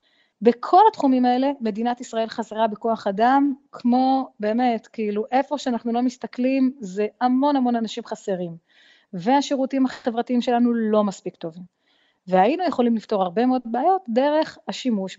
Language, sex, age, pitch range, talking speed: Hebrew, female, 30-49, 195-250 Hz, 135 wpm